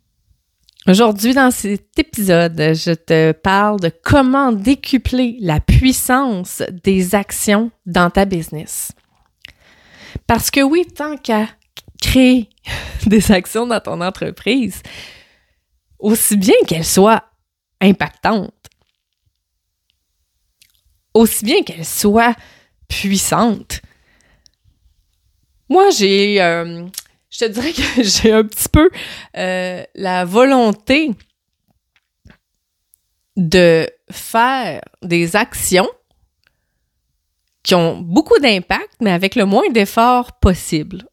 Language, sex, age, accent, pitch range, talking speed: French, female, 30-49, Canadian, 165-230 Hz, 95 wpm